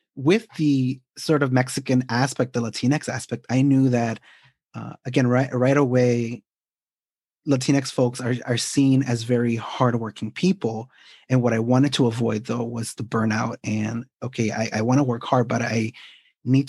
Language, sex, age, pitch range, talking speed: English, male, 30-49, 120-135 Hz, 165 wpm